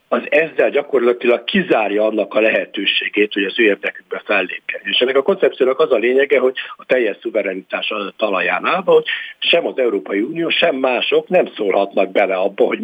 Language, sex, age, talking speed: Hungarian, male, 60-79, 175 wpm